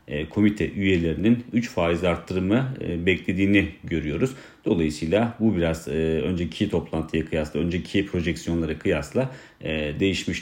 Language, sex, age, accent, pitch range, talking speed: Turkish, male, 40-59, native, 85-100 Hz, 100 wpm